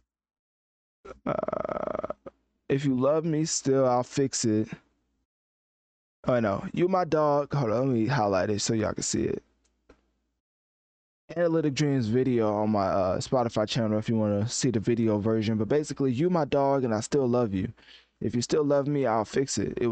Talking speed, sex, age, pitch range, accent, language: 180 wpm, male, 20-39, 110-140 Hz, American, English